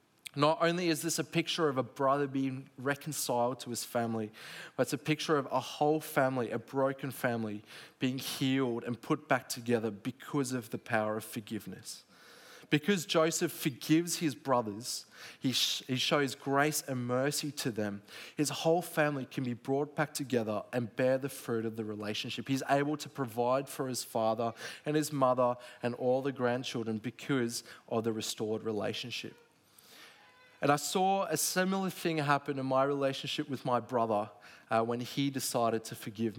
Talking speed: 170 wpm